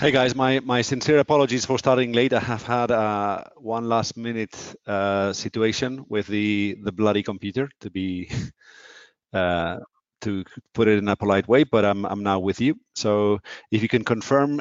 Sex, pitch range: male, 100-130 Hz